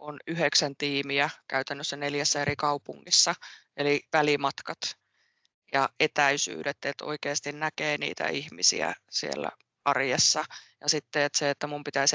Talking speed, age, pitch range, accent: 125 wpm, 20-39, 140-150 Hz, native